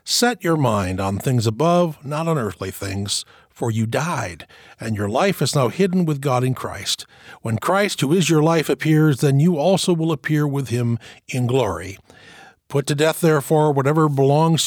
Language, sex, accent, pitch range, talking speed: English, male, American, 115-160 Hz, 185 wpm